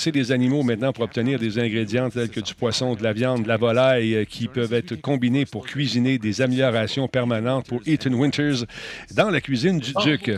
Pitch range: 115-140 Hz